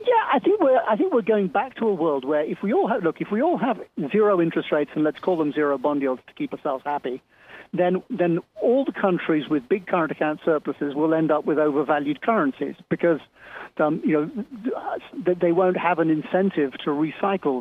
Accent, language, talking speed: British, English, 215 wpm